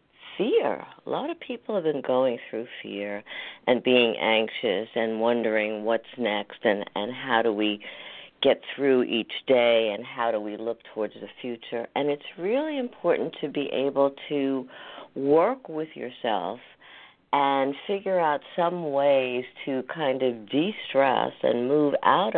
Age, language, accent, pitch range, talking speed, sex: 50-69, English, American, 120-155 Hz, 155 wpm, female